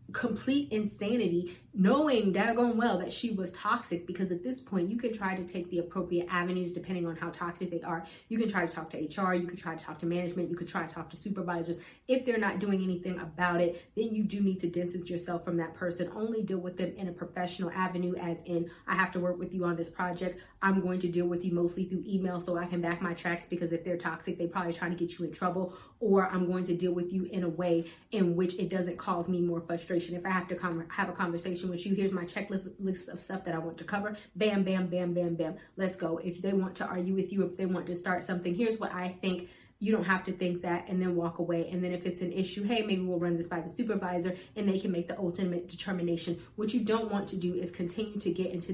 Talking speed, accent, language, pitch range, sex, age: 265 wpm, American, English, 175-190 Hz, female, 20-39